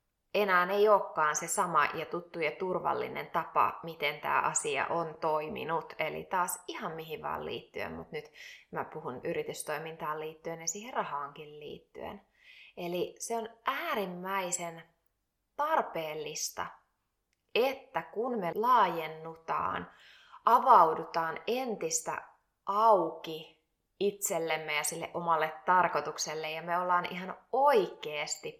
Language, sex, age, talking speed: Finnish, female, 20-39, 110 wpm